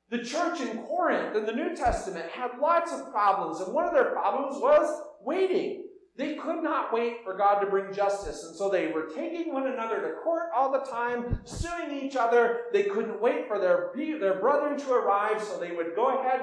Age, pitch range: 40-59, 205-280 Hz